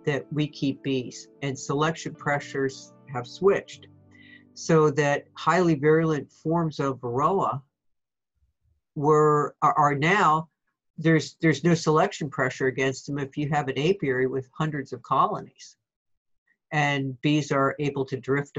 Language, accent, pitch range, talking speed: English, American, 130-160 Hz, 130 wpm